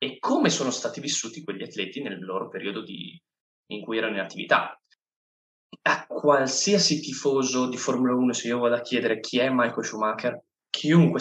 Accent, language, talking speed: native, Italian, 170 wpm